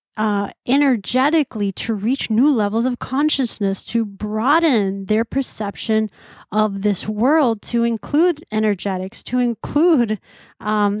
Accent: American